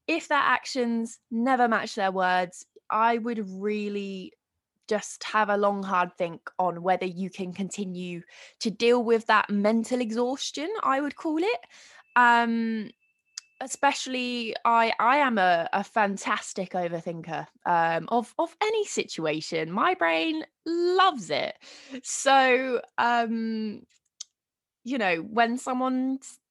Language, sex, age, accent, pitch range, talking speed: English, female, 20-39, British, 190-245 Hz, 125 wpm